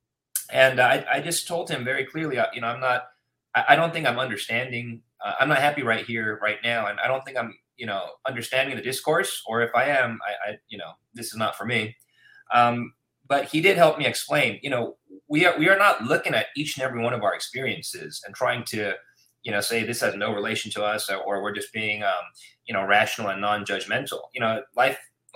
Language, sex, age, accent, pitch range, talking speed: English, male, 20-39, American, 115-145 Hz, 230 wpm